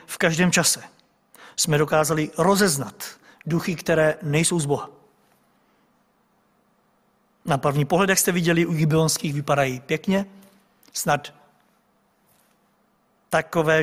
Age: 50-69